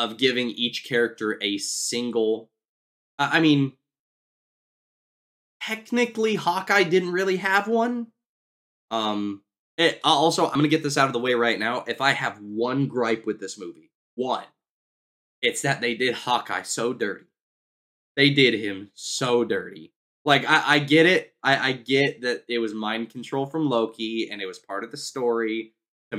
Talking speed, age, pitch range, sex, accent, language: 165 wpm, 20-39, 105-145 Hz, male, American, English